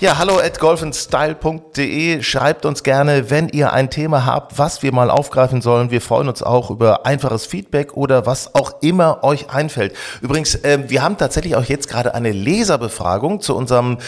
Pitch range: 115-140 Hz